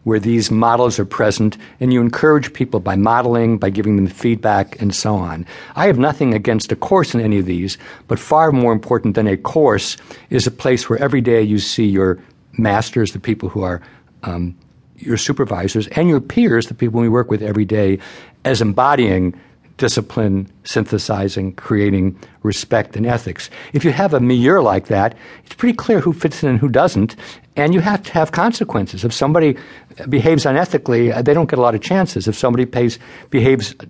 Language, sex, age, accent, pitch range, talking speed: English, male, 60-79, American, 105-135 Hz, 190 wpm